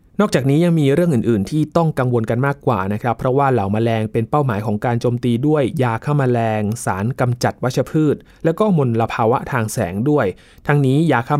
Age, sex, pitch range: 20-39, male, 115-150 Hz